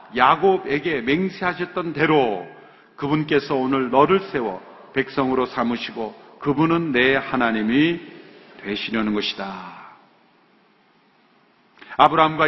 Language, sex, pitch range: Korean, male, 150-220 Hz